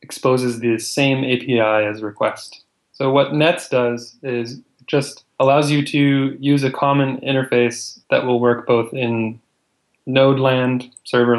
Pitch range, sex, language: 115-135 Hz, male, English